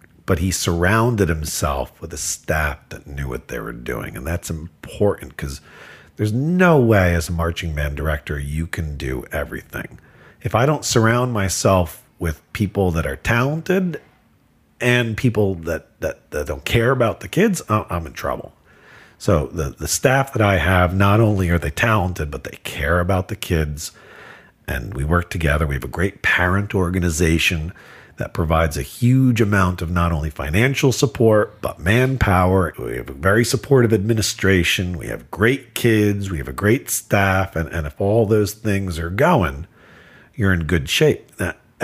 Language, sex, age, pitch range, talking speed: English, male, 40-59, 85-120 Hz, 170 wpm